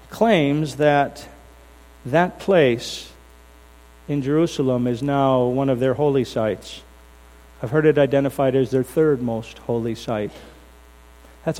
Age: 50-69